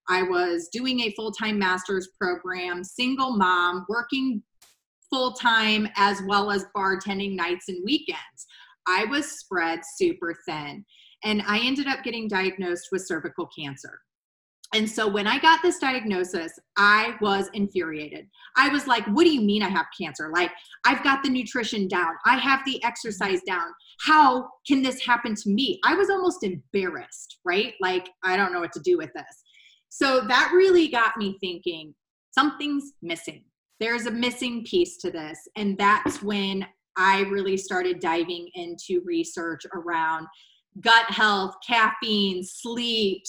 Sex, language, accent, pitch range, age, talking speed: female, English, American, 190-255 Hz, 30-49, 155 wpm